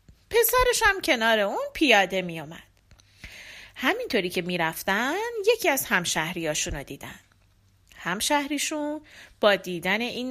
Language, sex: Persian, female